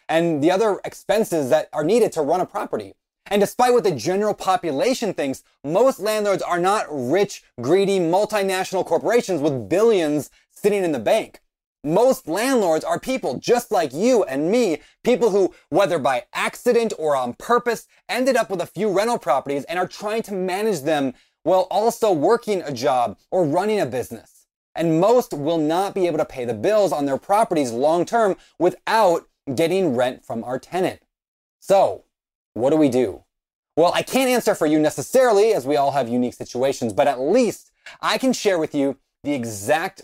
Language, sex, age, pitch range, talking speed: English, male, 20-39, 140-205 Hz, 180 wpm